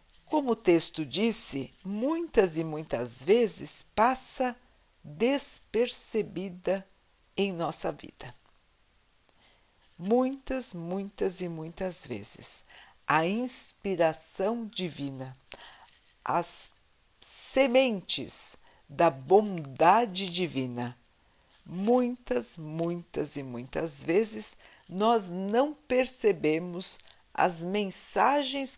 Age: 50-69